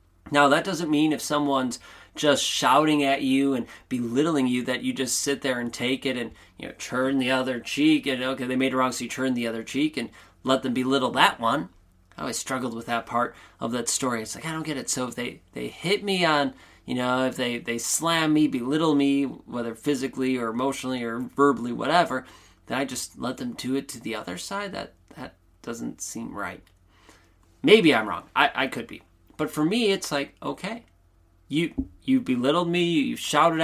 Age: 20-39